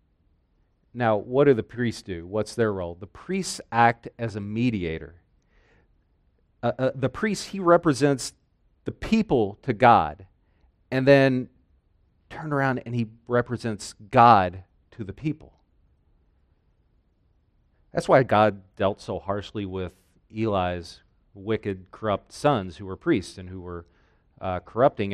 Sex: male